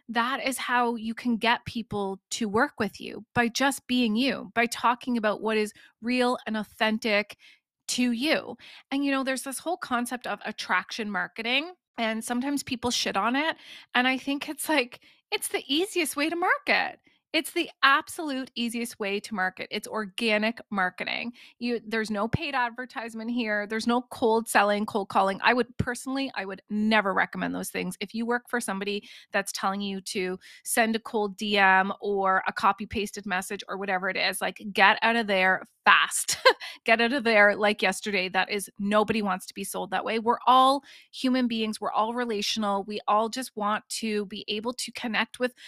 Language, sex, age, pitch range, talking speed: English, female, 20-39, 210-255 Hz, 185 wpm